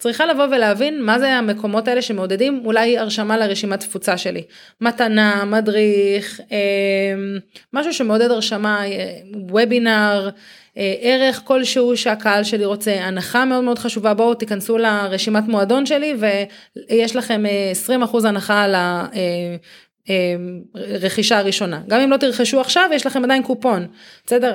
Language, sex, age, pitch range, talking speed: Hebrew, female, 30-49, 195-245 Hz, 120 wpm